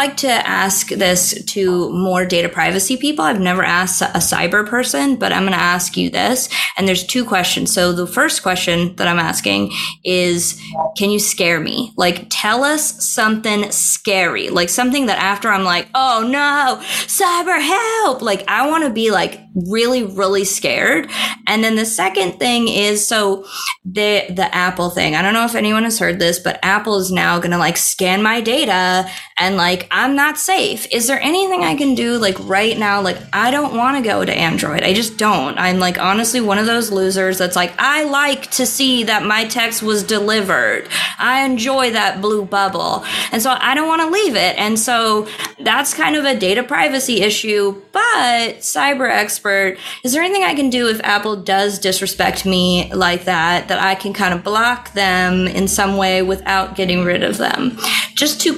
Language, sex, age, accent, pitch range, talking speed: English, female, 20-39, American, 185-255 Hz, 190 wpm